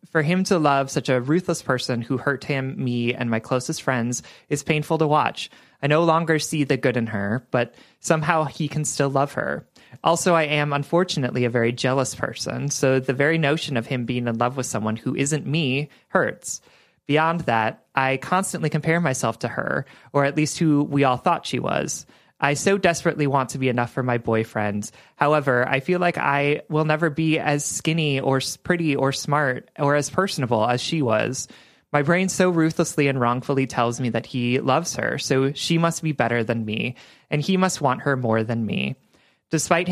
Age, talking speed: 30-49, 200 wpm